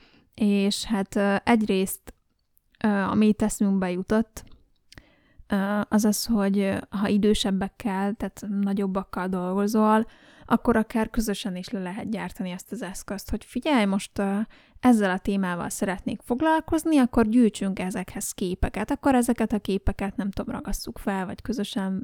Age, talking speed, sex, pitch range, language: 20-39, 130 wpm, female, 190-225 Hz, Hungarian